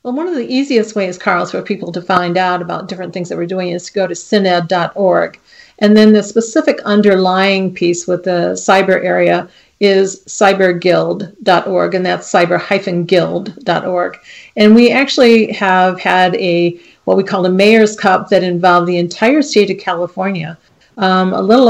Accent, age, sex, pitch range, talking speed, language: American, 40-59, female, 180-200 Hz, 165 wpm, English